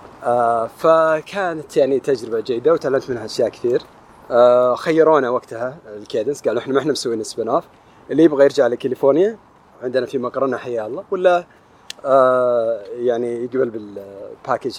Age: 30-49